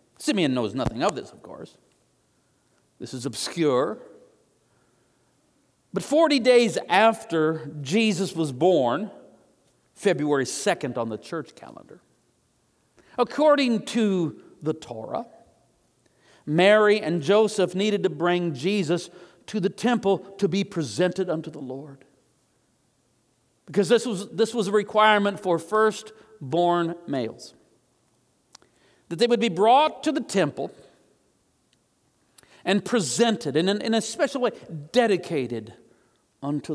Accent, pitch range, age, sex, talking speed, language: American, 155-215 Hz, 50-69, male, 115 wpm, English